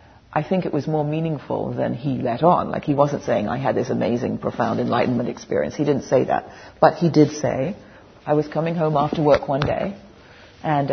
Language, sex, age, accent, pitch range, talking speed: English, female, 60-79, British, 140-180 Hz, 210 wpm